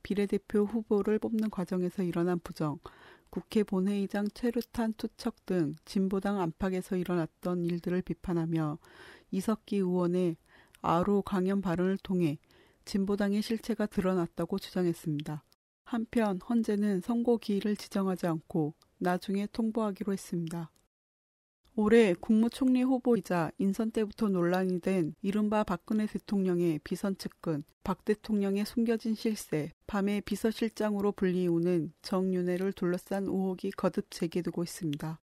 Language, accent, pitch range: Korean, native, 175-210 Hz